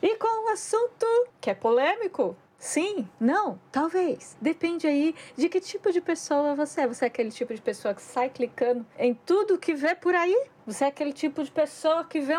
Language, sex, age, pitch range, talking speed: Portuguese, female, 20-39, 240-350 Hz, 210 wpm